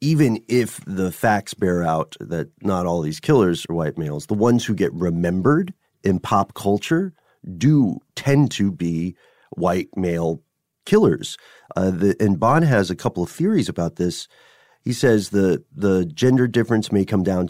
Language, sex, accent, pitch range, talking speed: English, male, American, 80-105 Hz, 170 wpm